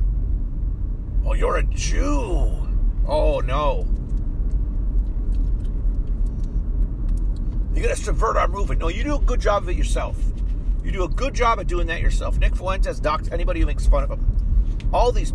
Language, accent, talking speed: English, American, 160 wpm